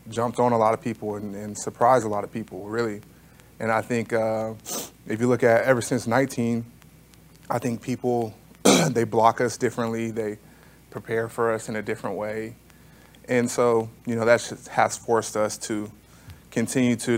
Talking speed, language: 180 wpm, English